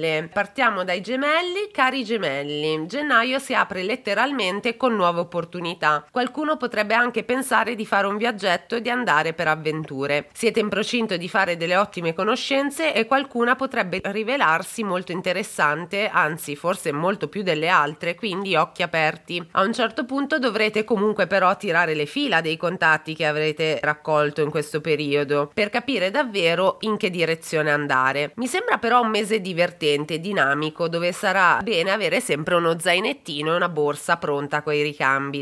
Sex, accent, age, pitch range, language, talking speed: female, native, 30-49, 155-230 Hz, Italian, 160 wpm